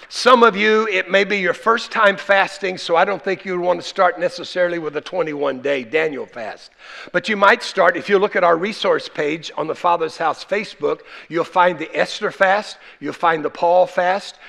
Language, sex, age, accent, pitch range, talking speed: English, male, 60-79, American, 170-210 Hz, 205 wpm